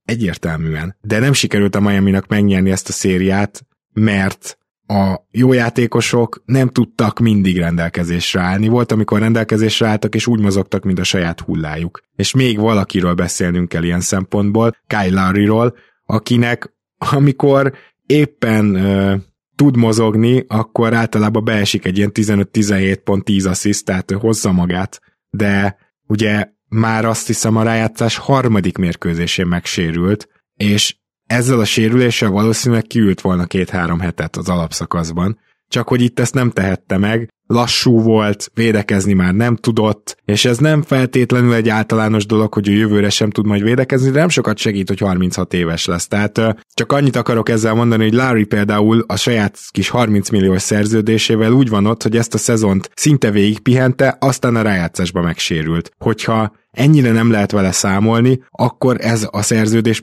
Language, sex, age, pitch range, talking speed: Hungarian, male, 20-39, 95-115 Hz, 150 wpm